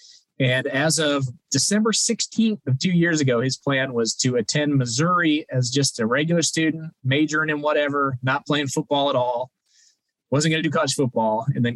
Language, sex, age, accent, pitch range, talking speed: English, male, 20-39, American, 120-150 Hz, 180 wpm